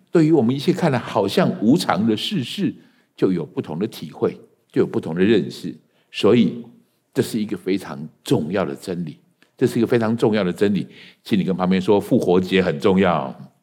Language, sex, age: Chinese, male, 60-79